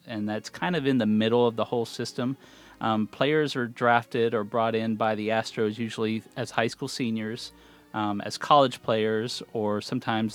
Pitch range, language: 105-125 Hz, English